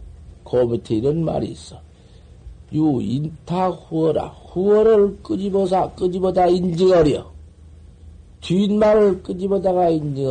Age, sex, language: 50-69, male, Korean